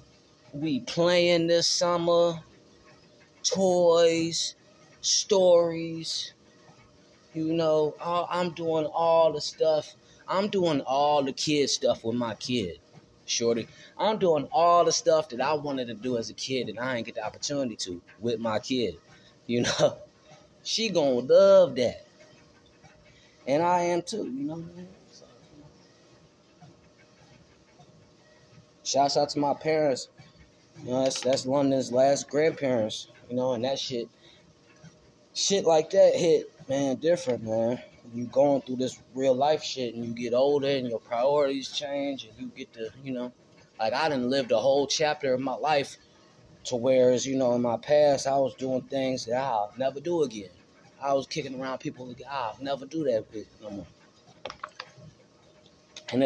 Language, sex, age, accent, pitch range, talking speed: English, male, 20-39, American, 125-160 Hz, 155 wpm